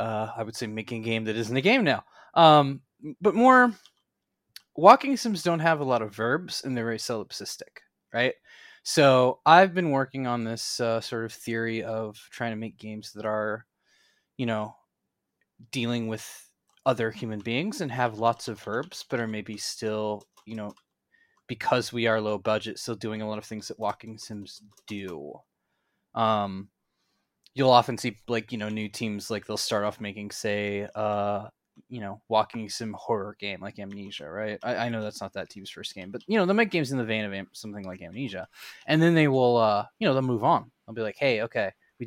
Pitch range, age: 110-135 Hz, 20-39